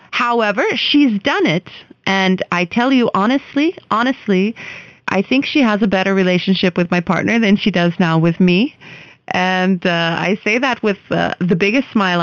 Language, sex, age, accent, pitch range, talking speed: English, female, 30-49, American, 175-225 Hz, 175 wpm